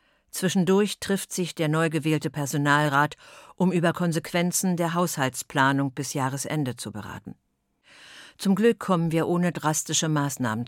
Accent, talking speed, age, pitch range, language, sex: German, 130 wpm, 50-69, 135-180 Hz, German, female